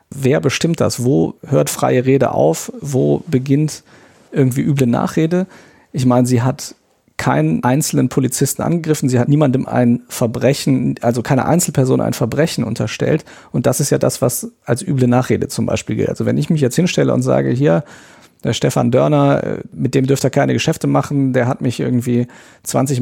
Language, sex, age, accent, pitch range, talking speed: German, male, 40-59, German, 125-145 Hz, 175 wpm